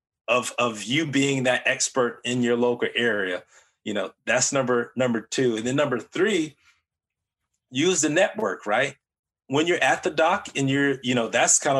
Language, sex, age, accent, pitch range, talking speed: English, male, 20-39, American, 125-140 Hz, 180 wpm